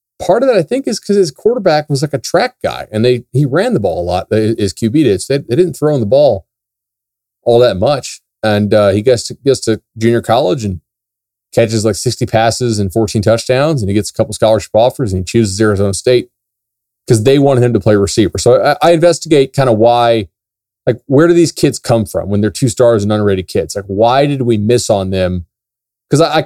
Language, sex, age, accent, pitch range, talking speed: English, male, 30-49, American, 100-135 Hz, 235 wpm